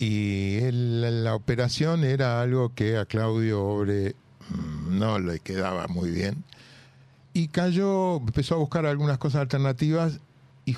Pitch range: 105-135 Hz